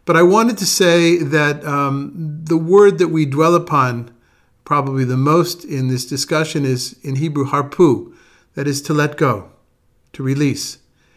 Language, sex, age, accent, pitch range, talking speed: English, male, 50-69, American, 125-155 Hz, 160 wpm